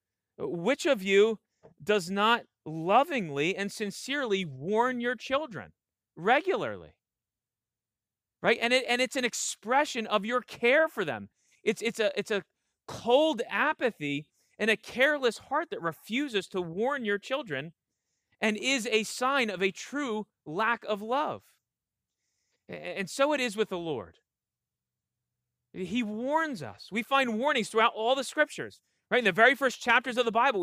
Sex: male